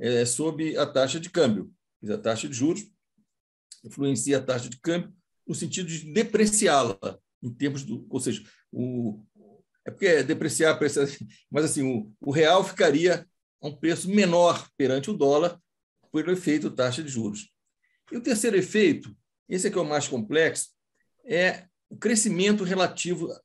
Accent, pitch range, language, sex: Brazilian, 140-200 Hz, Portuguese, male